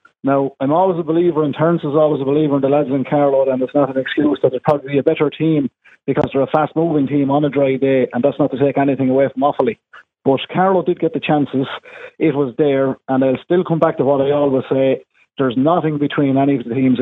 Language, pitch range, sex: English, 135-165 Hz, male